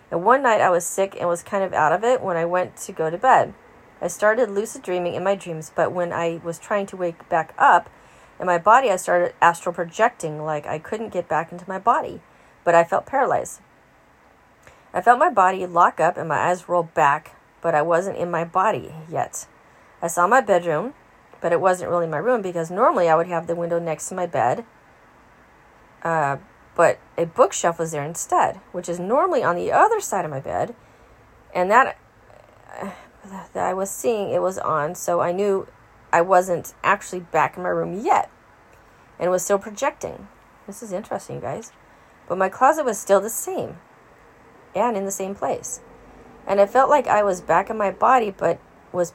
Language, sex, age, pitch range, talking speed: English, female, 30-49, 170-210 Hz, 200 wpm